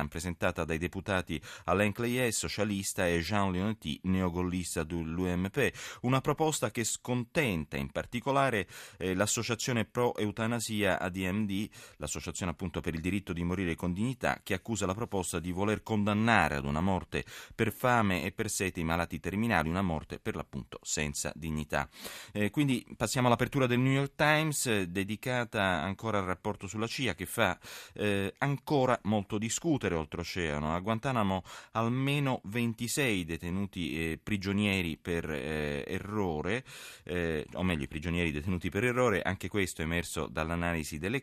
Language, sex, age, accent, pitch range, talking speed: Italian, male, 30-49, native, 85-110 Hz, 145 wpm